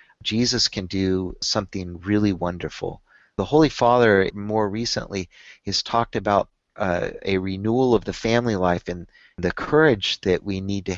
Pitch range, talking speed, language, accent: 95-115 Hz, 155 wpm, English, American